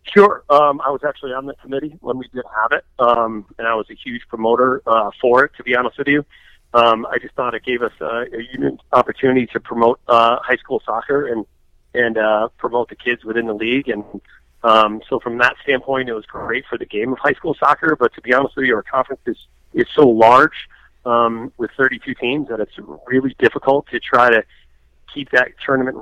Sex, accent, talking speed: male, American, 225 wpm